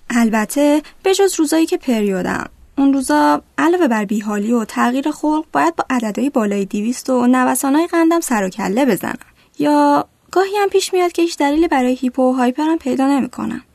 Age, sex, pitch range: 10-29, female, 220-290 Hz